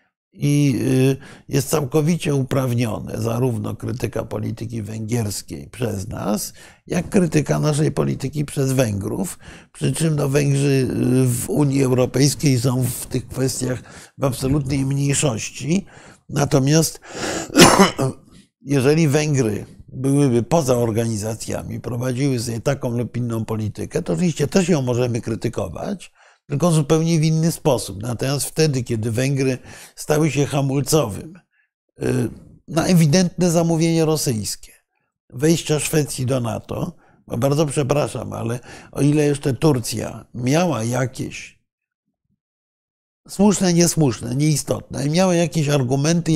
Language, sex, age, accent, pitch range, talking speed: Polish, male, 50-69, native, 120-155 Hz, 105 wpm